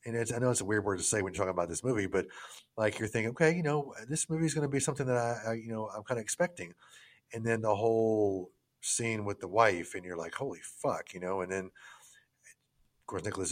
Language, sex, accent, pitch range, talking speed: English, male, American, 95-120 Hz, 260 wpm